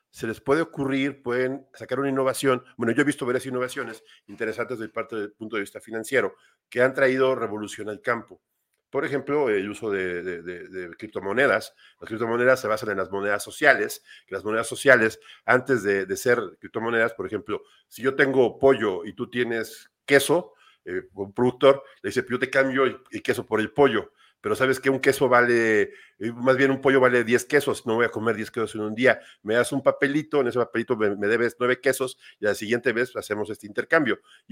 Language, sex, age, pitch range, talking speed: Spanish, male, 50-69, 110-140 Hz, 205 wpm